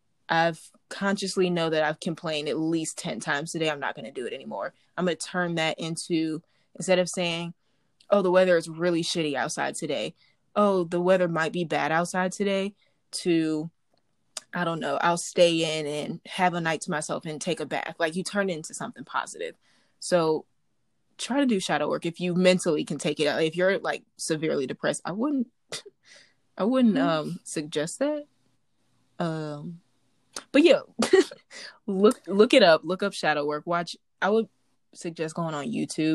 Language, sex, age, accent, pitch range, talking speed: English, female, 20-39, American, 155-190 Hz, 180 wpm